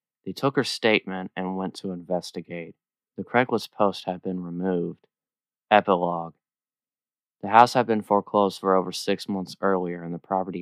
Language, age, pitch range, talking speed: English, 20-39, 90-100 Hz, 160 wpm